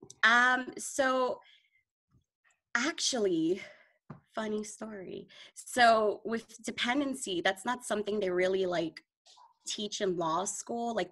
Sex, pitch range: female, 175-220 Hz